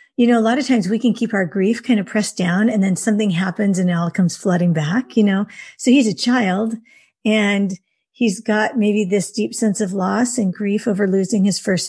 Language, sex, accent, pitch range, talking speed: English, female, American, 195-235 Hz, 230 wpm